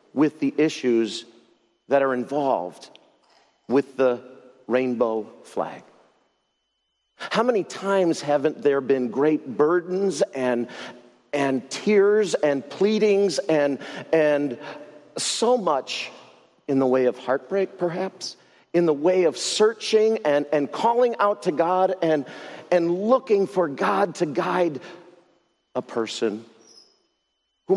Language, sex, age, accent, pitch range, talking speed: English, male, 40-59, American, 140-210 Hz, 115 wpm